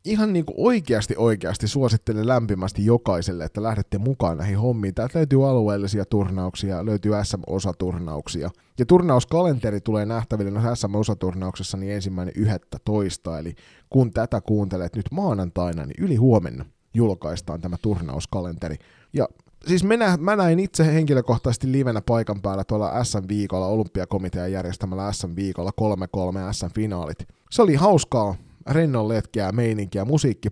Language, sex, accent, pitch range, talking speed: Finnish, male, native, 95-125 Hz, 125 wpm